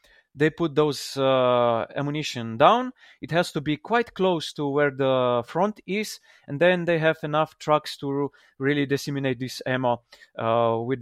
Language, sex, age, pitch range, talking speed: English, male, 20-39, 125-160 Hz, 165 wpm